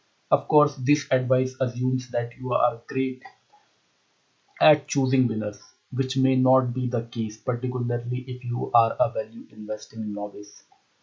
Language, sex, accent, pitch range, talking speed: English, male, Indian, 120-130 Hz, 140 wpm